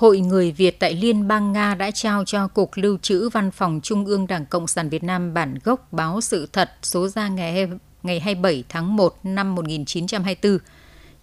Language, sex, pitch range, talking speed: Vietnamese, female, 170-210 Hz, 185 wpm